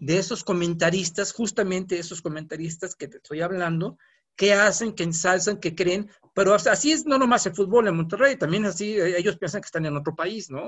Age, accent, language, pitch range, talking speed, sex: 50-69, Mexican, Spanish, 160-210 Hz, 210 wpm, male